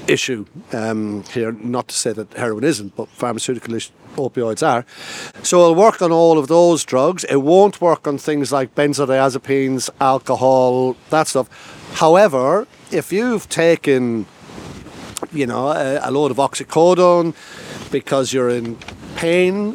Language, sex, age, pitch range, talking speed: English, male, 60-79, 130-165 Hz, 140 wpm